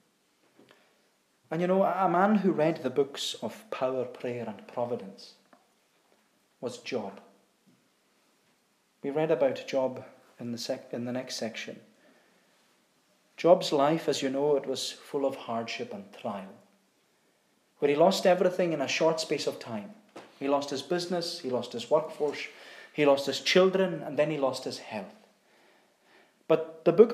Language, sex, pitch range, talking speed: English, male, 135-175 Hz, 155 wpm